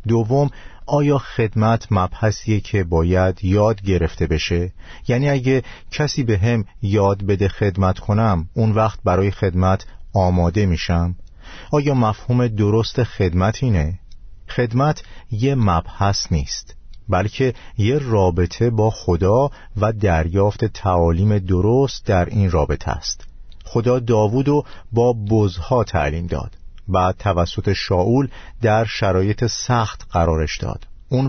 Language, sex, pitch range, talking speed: Persian, male, 90-115 Hz, 120 wpm